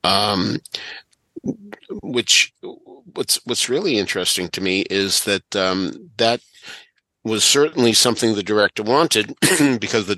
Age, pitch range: 50-69, 95-120 Hz